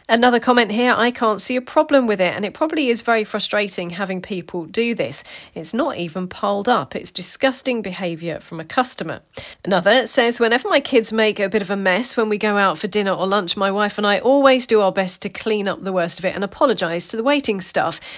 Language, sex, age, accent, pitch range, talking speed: English, female, 40-59, British, 180-240 Hz, 235 wpm